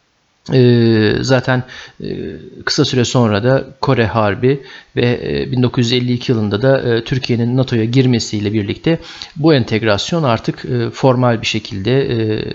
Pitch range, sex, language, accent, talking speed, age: 115-135 Hz, male, Turkish, native, 130 wpm, 50-69